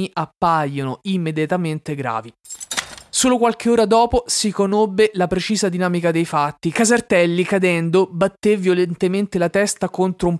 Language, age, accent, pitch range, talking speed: Italian, 20-39, native, 165-200 Hz, 125 wpm